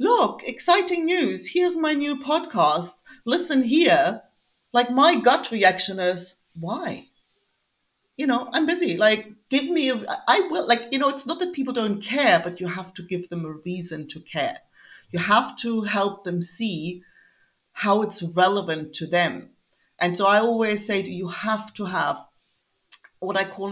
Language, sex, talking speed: English, female, 170 wpm